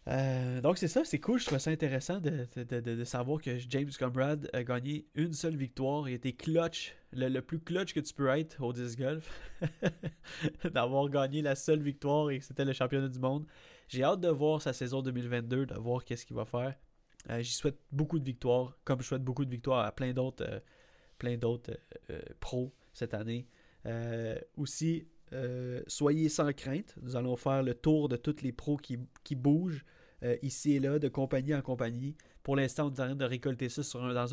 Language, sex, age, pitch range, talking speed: French, male, 20-39, 120-145 Hz, 205 wpm